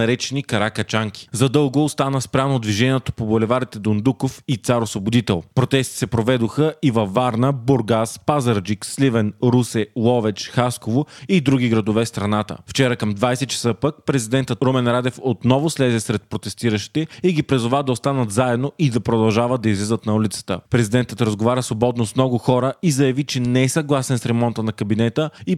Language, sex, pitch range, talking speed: Bulgarian, male, 115-135 Hz, 170 wpm